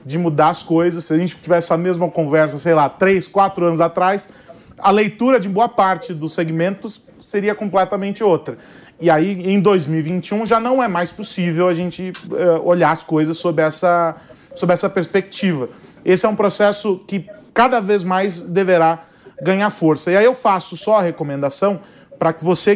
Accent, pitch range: Brazilian, 165-210 Hz